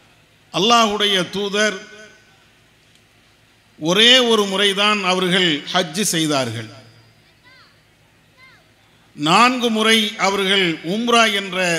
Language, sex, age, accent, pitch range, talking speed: English, male, 50-69, Indian, 155-230 Hz, 65 wpm